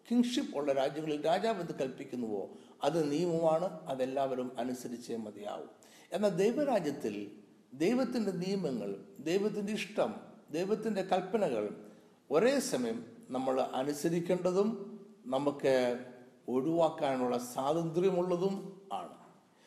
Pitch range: 130-210 Hz